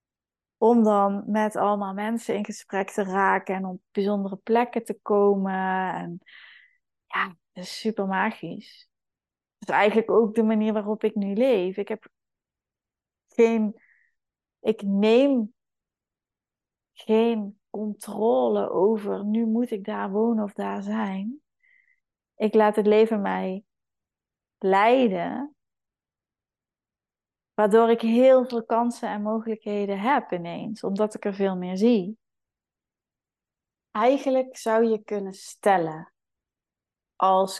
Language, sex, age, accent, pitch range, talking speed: Dutch, female, 20-39, Dutch, 195-230 Hz, 120 wpm